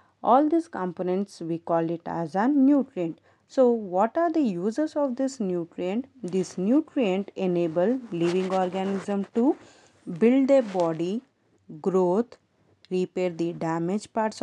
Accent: Indian